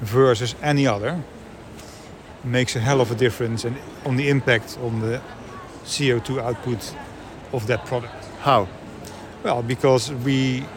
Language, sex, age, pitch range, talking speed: English, male, 50-69, 115-130 Hz, 130 wpm